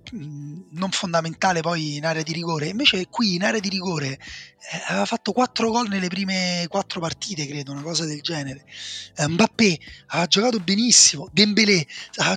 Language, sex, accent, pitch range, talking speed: Italian, male, native, 145-195 Hz, 165 wpm